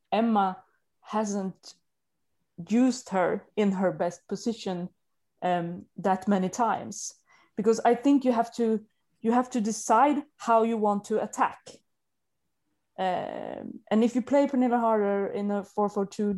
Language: English